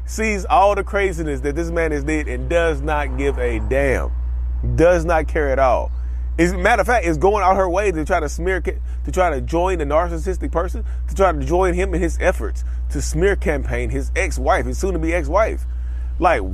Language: English